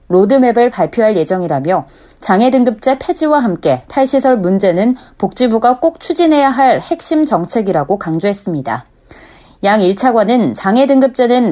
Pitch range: 195-255 Hz